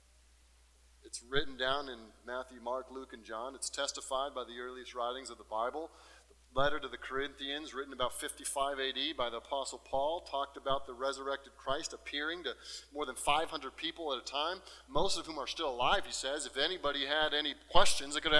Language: English